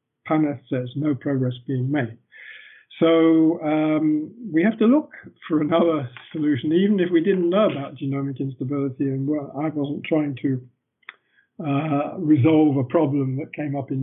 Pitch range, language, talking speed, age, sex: 140-180 Hz, English, 155 wpm, 50-69, male